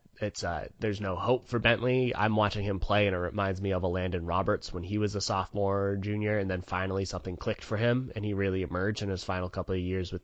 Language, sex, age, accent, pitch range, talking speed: English, male, 20-39, American, 95-120 Hz, 250 wpm